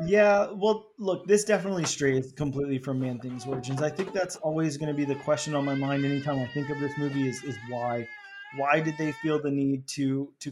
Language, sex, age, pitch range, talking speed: English, male, 20-39, 140-165 Hz, 220 wpm